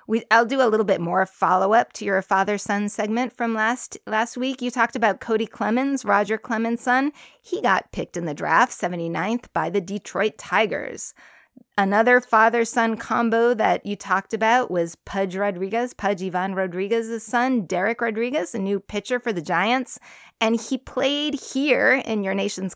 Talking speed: 170 wpm